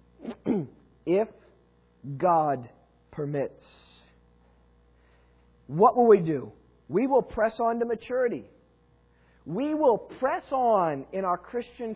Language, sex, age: English, male, 40-59